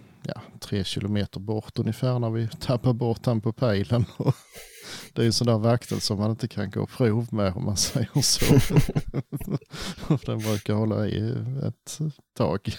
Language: Swedish